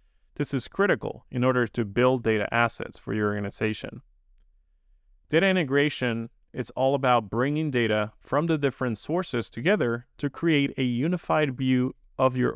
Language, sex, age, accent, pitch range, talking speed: English, male, 30-49, American, 95-130 Hz, 150 wpm